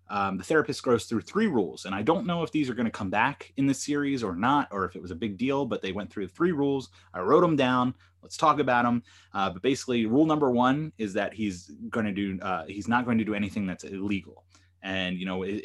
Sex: male